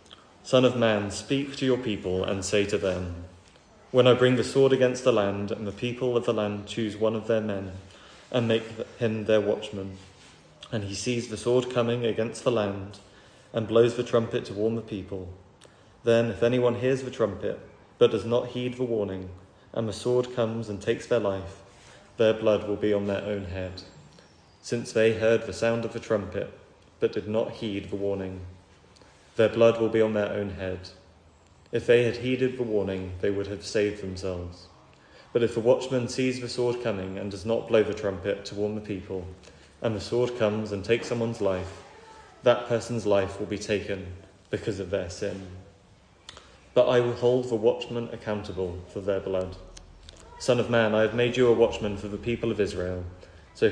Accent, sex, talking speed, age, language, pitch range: British, male, 195 wpm, 30-49, English, 95-115 Hz